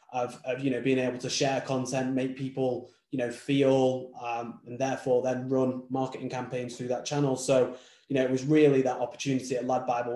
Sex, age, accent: male, 20-39, British